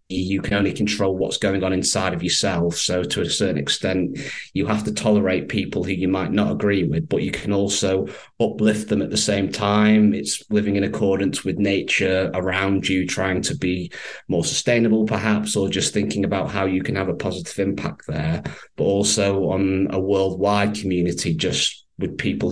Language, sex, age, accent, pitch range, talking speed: English, male, 30-49, British, 95-105 Hz, 190 wpm